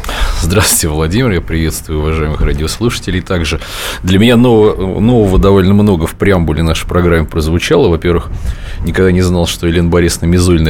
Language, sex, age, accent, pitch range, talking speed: Russian, male, 20-39, native, 85-105 Hz, 145 wpm